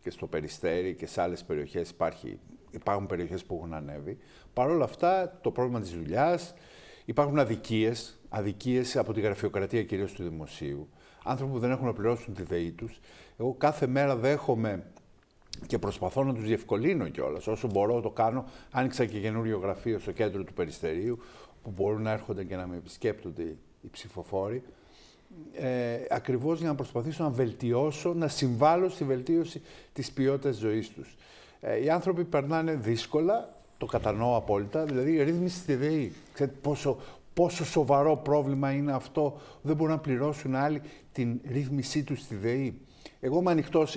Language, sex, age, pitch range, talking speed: Greek, male, 50-69, 110-150 Hz, 155 wpm